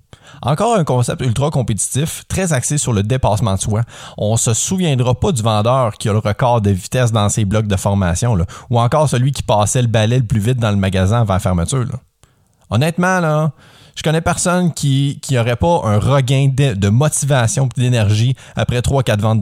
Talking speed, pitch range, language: 205 wpm, 110-140 Hz, French